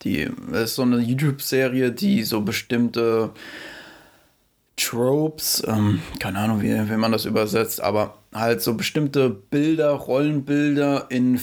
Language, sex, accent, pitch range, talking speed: German, male, German, 120-145 Hz, 125 wpm